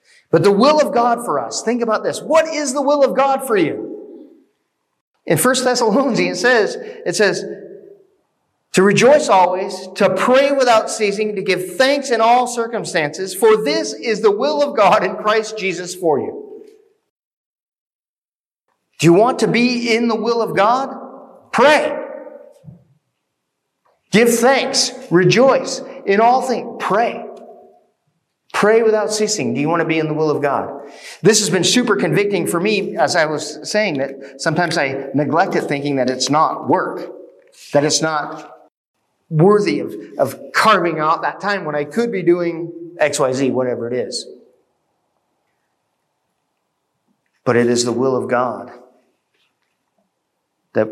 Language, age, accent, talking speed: English, 40-59, American, 155 wpm